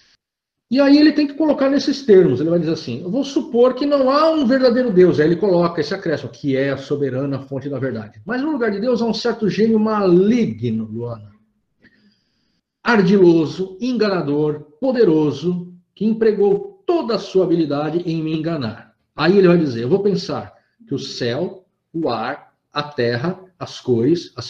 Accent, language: Brazilian, Portuguese